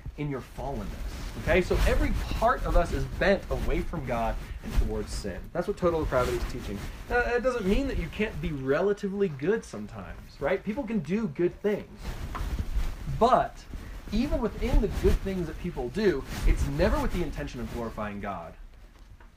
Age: 20-39